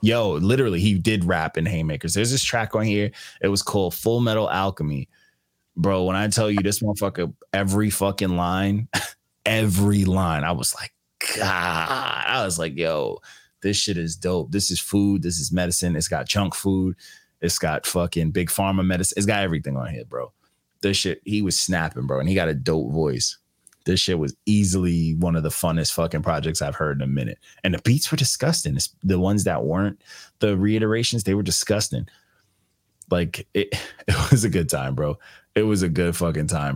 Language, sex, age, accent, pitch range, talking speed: English, male, 20-39, American, 80-100 Hz, 195 wpm